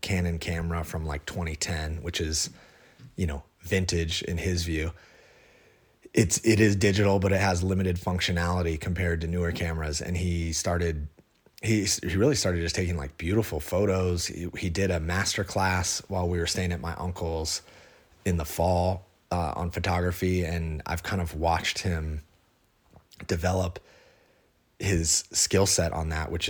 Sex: male